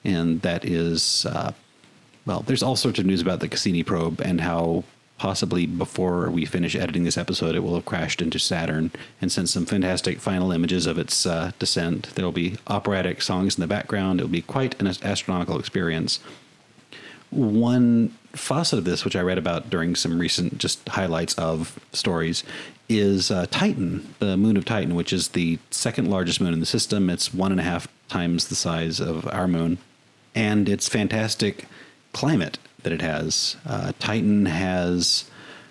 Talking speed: 180 wpm